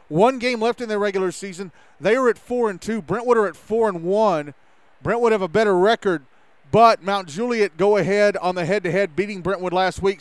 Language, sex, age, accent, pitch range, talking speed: English, male, 30-49, American, 180-215 Hz, 190 wpm